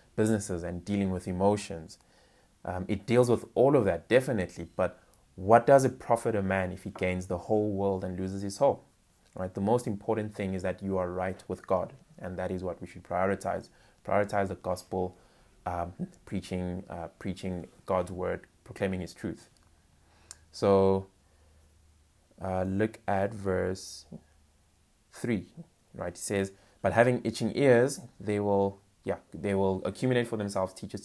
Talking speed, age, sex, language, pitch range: 160 wpm, 20-39, male, English, 90-105 Hz